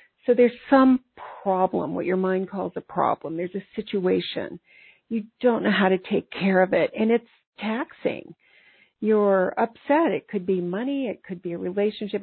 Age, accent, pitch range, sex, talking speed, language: 50-69, American, 190-245 Hz, female, 175 wpm, English